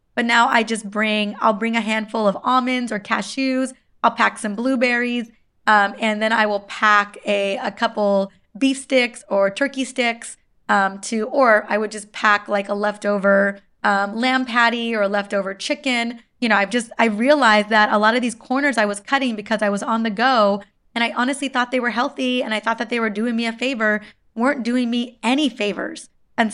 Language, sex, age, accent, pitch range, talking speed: English, female, 20-39, American, 210-250 Hz, 210 wpm